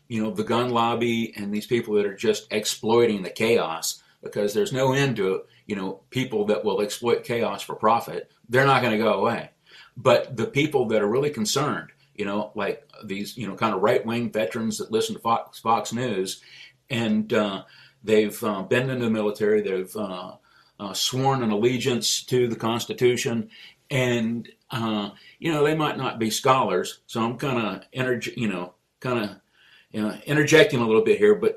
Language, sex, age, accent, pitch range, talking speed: English, male, 50-69, American, 110-150 Hz, 190 wpm